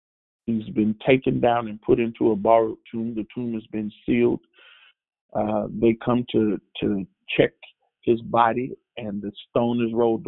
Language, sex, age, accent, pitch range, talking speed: English, male, 40-59, American, 105-130 Hz, 165 wpm